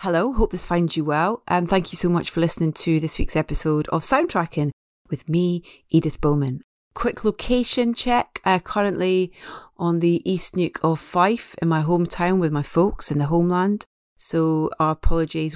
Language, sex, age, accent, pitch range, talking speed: English, female, 30-49, British, 160-210 Hz, 175 wpm